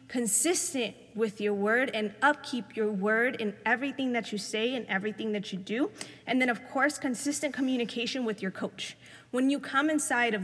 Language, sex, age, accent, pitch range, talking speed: English, female, 20-39, American, 215-260 Hz, 185 wpm